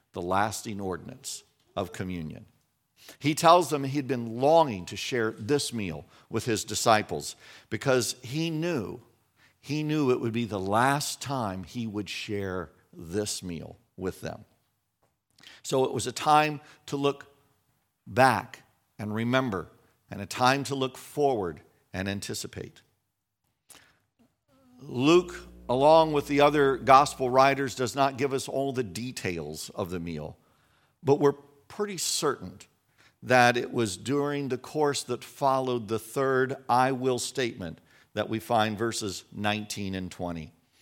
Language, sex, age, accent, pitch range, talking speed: English, male, 50-69, American, 100-140 Hz, 140 wpm